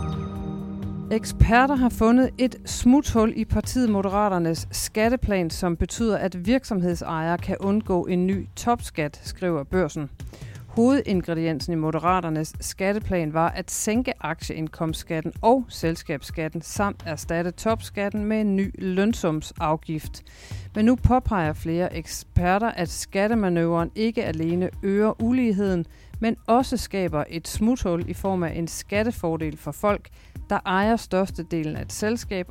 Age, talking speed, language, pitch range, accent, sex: 40-59, 120 wpm, Danish, 165-215 Hz, native, female